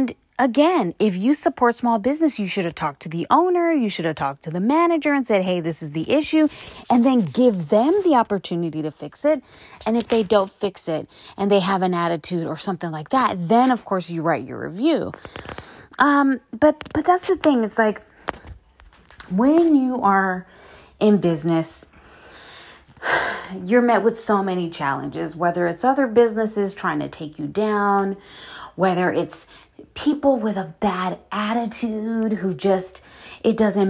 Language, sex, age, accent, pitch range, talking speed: English, female, 30-49, American, 180-245 Hz, 170 wpm